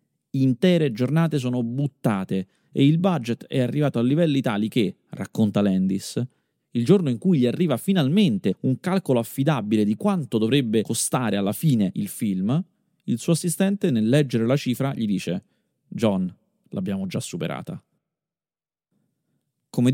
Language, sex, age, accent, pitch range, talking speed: Italian, male, 30-49, native, 110-175 Hz, 140 wpm